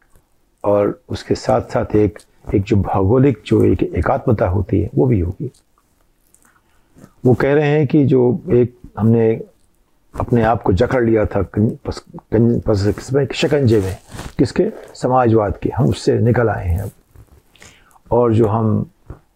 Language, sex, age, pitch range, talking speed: Hindi, male, 50-69, 105-125 Hz, 135 wpm